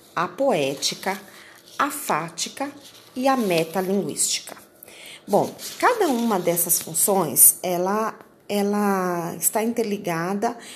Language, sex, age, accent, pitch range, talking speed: Portuguese, female, 30-49, Brazilian, 170-230 Hz, 90 wpm